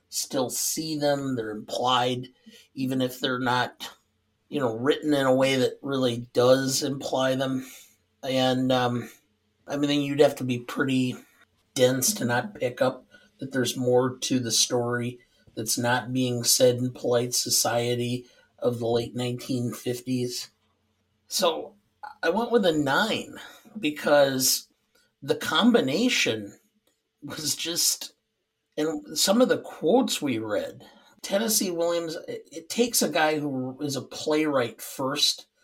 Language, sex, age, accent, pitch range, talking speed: English, male, 50-69, American, 125-155 Hz, 135 wpm